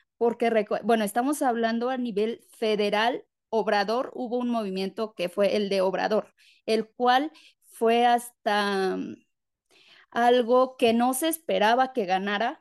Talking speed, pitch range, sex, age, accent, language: 130 wpm, 210-250 Hz, female, 20-39, Mexican, Spanish